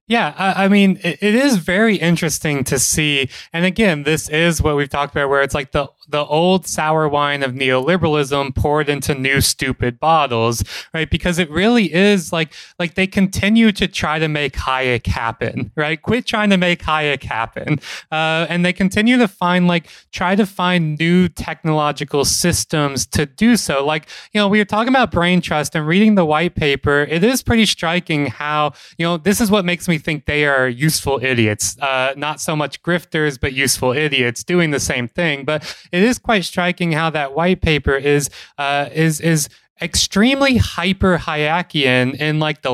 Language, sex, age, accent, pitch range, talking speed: English, male, 20-39, American, 145-180 Hz, 185 wpm